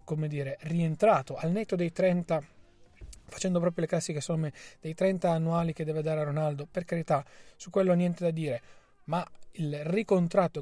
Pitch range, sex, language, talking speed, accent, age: 145-180 Hz, male, Italian, 170 wpm, native, 30-49